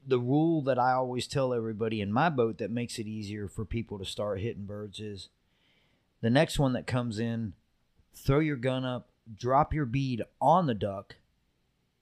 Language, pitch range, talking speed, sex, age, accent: English, 95-130 Hz, 185 wpm, male, 30-49, American